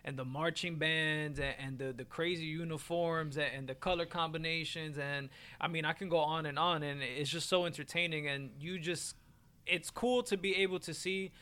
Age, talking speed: 20-39, 205 wpm